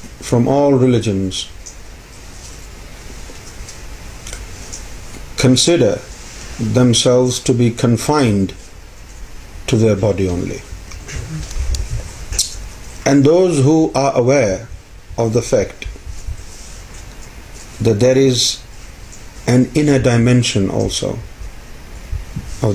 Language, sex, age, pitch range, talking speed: Urdu, male, 50-69, 90-125 Hz, 75 wpm